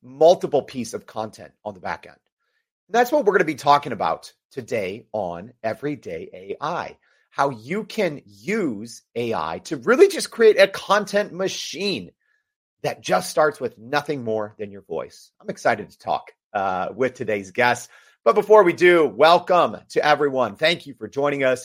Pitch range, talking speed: 125-195 Hz, 170 wpm